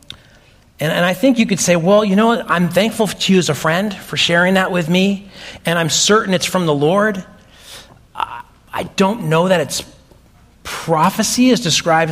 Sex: male